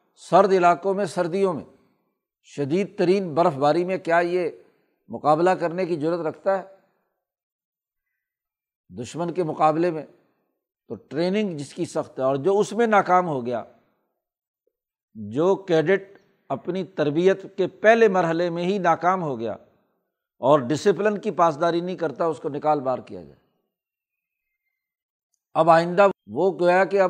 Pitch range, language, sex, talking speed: 150-185 Hz, Urdu, male, 140 wpm